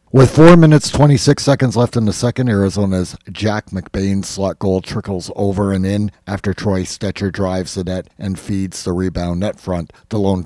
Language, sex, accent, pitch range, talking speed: English, male, American, 95-115 Hz, 185 wpm